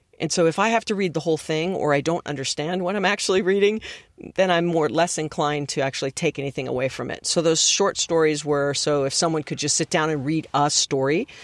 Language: English